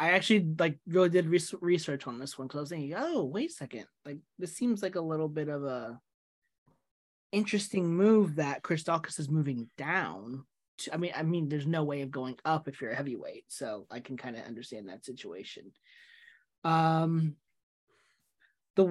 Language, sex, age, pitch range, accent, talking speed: English, male, 20-39, 140-185 Hz, American, 185 wpm